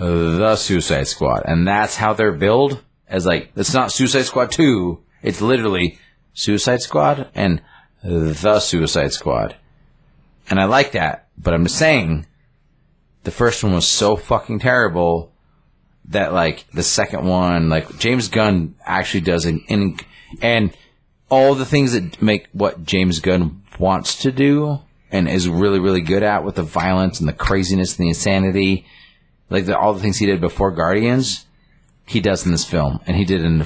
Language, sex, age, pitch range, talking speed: English, male, 30-49, 85-110 Hz, 170 wpm